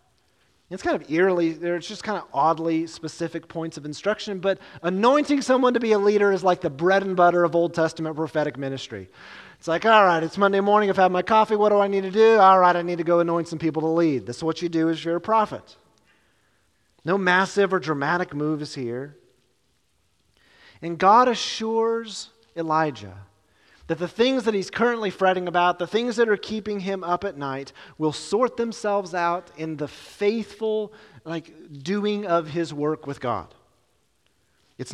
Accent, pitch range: American, 150-200 Hz